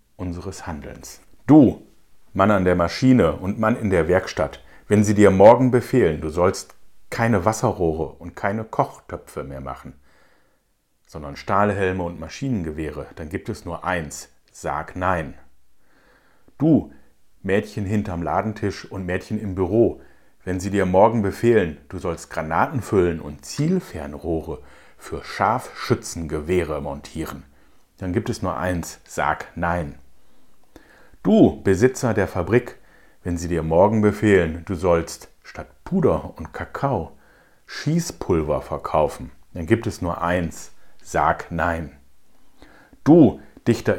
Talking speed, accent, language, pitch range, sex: 125 wpm, German, German, 80-105 Hz, male